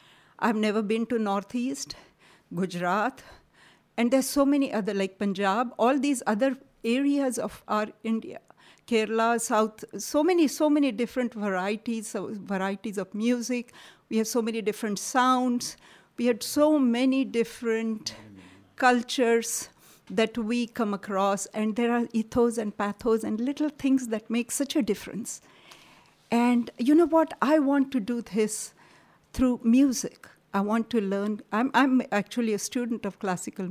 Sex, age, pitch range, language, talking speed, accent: female, 50-69, 205-250 Hz, English, 150 wpm, Indian